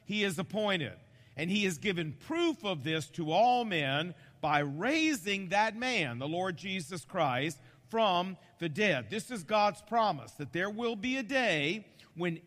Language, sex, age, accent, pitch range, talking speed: English, male, 50-69, American, 155-220 Hz, 170 wpm